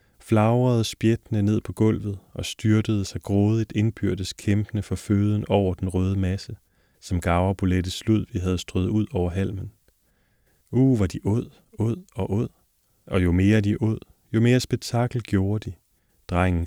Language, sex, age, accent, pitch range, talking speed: Danish, male, 30-49, native, 95-110 Hz, 160 wpm